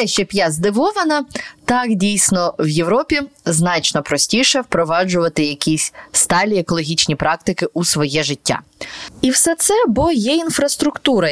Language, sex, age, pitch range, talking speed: Ukrainian, female, 20-39, 150-205 Hz, 120 wpm